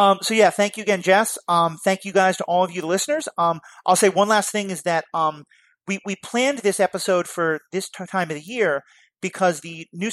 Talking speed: 245 wpm